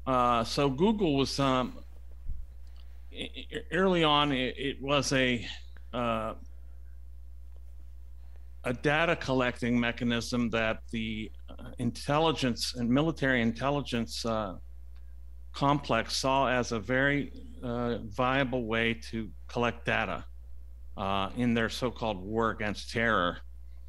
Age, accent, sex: 50-69, American, male